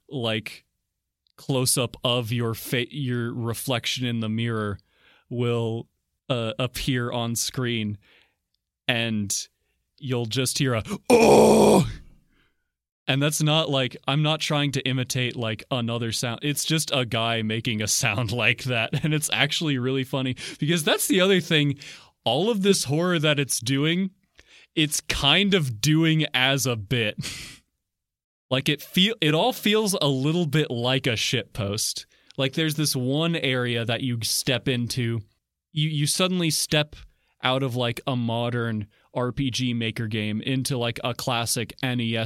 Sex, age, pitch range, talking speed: male, 20-39, 115-145 Hz, 155 wpm